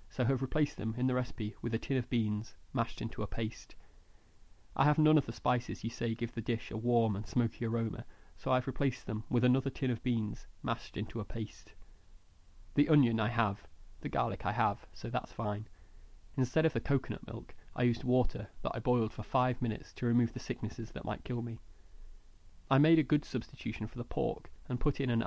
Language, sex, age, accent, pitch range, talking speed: English, male, 30-49, British, 105-125 Hz, 215 wpm